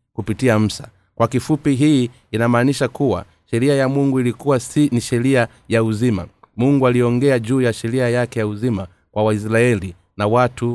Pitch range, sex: 105-130 Hz, male